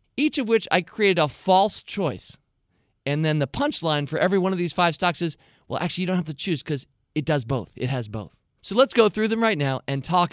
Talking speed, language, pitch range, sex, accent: 250 wpm, English, 130-180 Hz, male, American